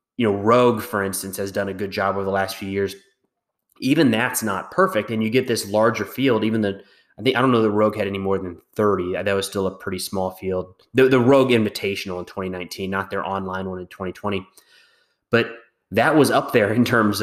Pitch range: 100-125 Hz